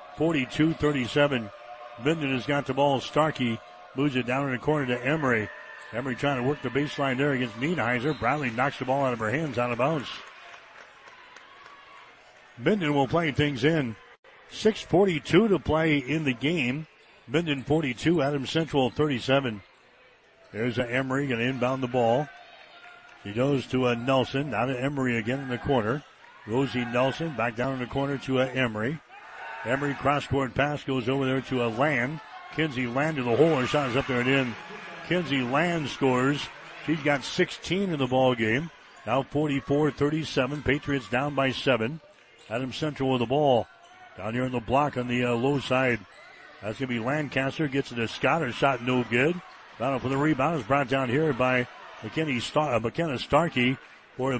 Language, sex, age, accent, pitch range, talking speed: English, male, 60-79, American, 125-145 Hz, 175 wpm